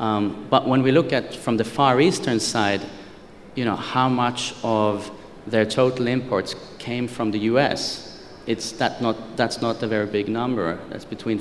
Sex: male